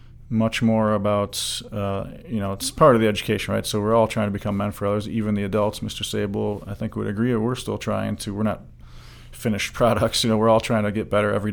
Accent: American